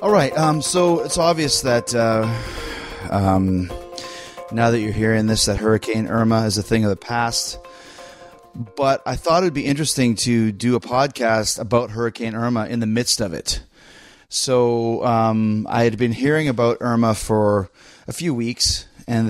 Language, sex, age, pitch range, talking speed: English, male, 30-49, 110-135 Hz, 170 wpm